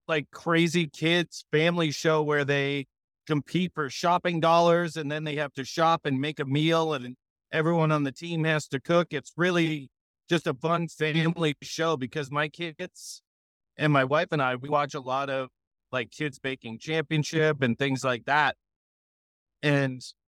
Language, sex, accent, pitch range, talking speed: English, male, American, 135-165 Hz, 170 wpm